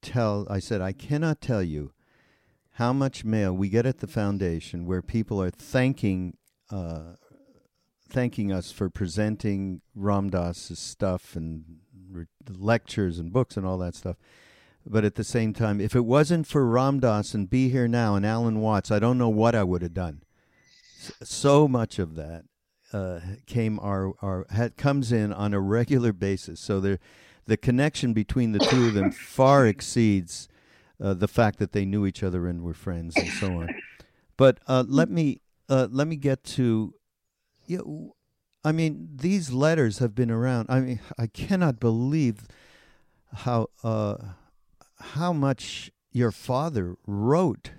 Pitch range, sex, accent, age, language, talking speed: 95-130 Hz, male, American, 50-69, English, 165 wpm